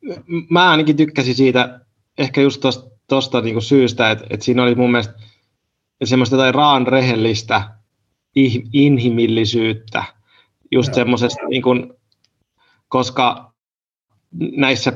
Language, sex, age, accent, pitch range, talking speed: Finnish, male, 20-39, native, 120-145 Hz, 100 wpm